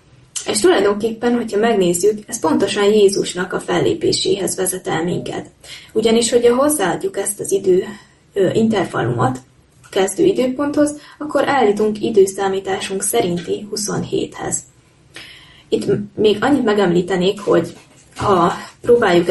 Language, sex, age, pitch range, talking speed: Hungarian, female, 20-39, 185-225 Hz, 105 wpm